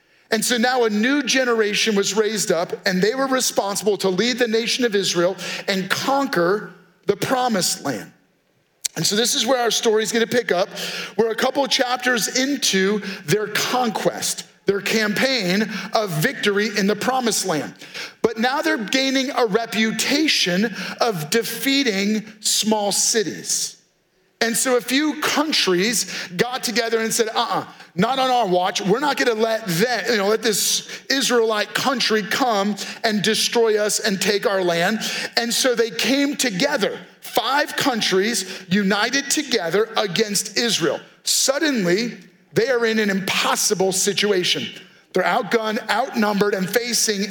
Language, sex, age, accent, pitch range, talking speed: English, male, 40-59, American, 195-240 Hz, 150 wpm